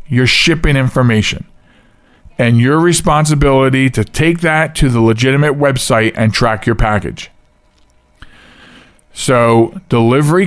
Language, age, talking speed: English, 40-59, 110 wpm